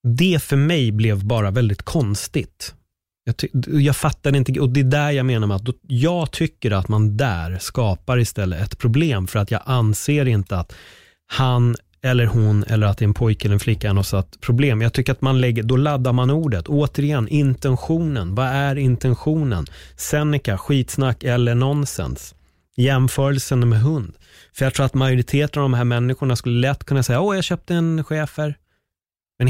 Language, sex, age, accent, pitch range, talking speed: Swedish, male, 30-49, native, 105-135 Hz, 185 wpm